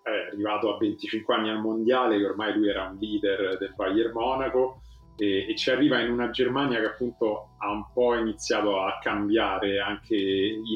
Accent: native